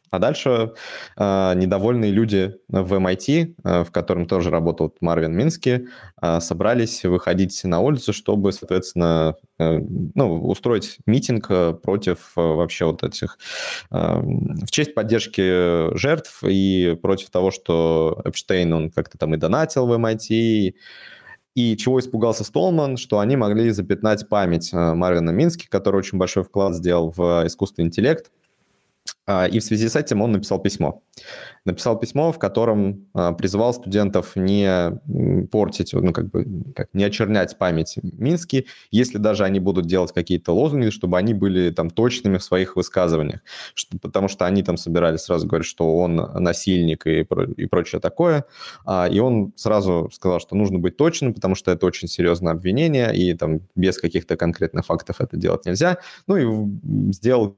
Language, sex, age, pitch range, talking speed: Russian, male, 20-39, 85-115 Hz, 145 wpm